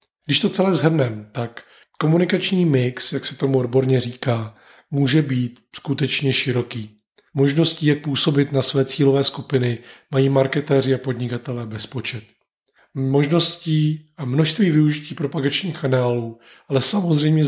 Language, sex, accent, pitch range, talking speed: Czech, male, native, 125-150 Hz, 125 wpm